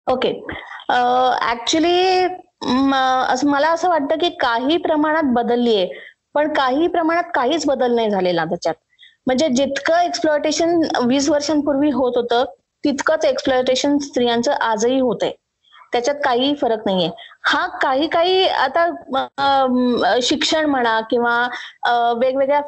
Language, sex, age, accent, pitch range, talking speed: Marathi, female, 20-39, native, 245-315 Hz, 115 wpm